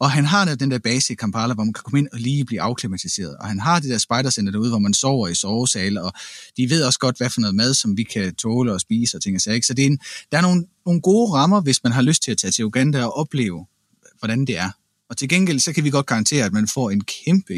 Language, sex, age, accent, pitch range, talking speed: Danish, male, 30-49, native, 120-165 Hz, 290 wpm